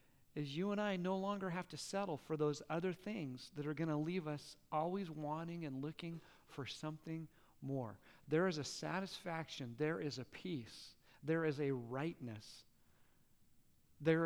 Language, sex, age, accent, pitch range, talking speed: English, male, 40-59, American, 130-165 Hz, 160 wpm